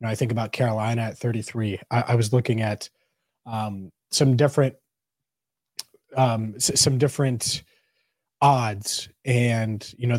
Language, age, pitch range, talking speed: English, 20-39, 115-135 Hz, 125 wpm